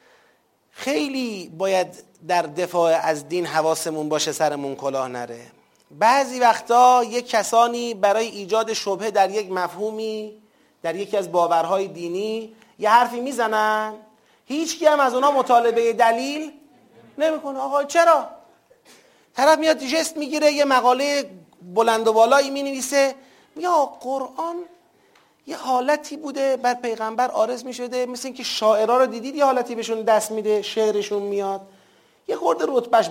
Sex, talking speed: male, 135 wpm